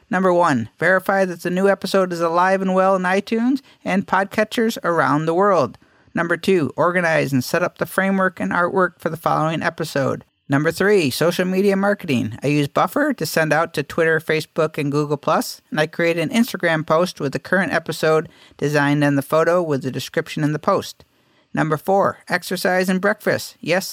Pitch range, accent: 155-195 Hz, American